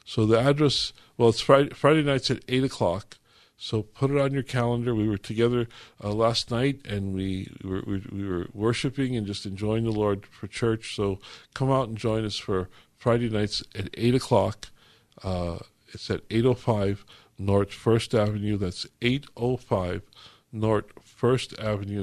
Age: 50-69